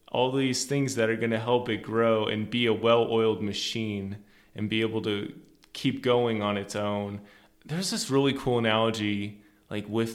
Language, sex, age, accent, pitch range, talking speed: English, male, 20-39, American, 105-115 Hz, 185 wpm